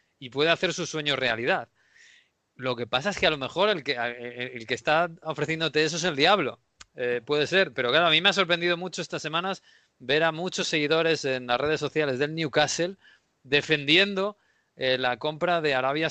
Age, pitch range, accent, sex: 30-49, 130-160 Hz, Spanish, male